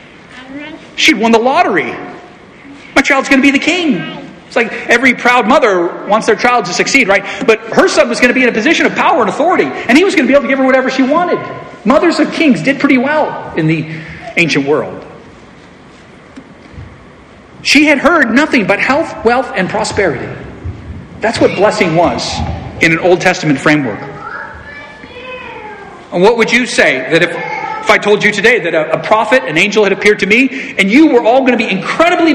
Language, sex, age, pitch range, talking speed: English, male, 40-59, 195-290 Hz, 195 wpm